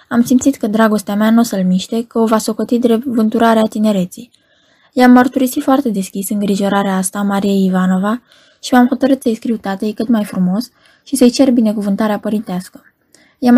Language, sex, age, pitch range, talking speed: Romanian, female, 20-39, 195-245 Hz, 175 wpm